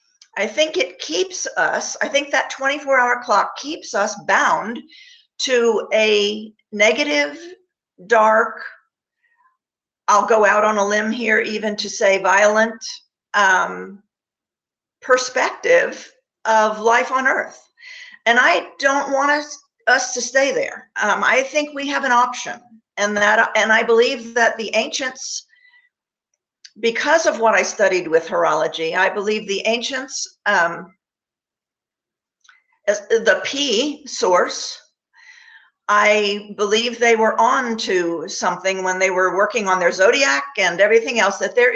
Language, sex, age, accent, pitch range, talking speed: English, female, 50-69, American, 210-295 Hz, 130 wpm